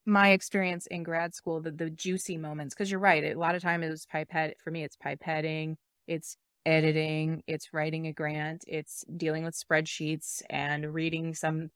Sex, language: female, English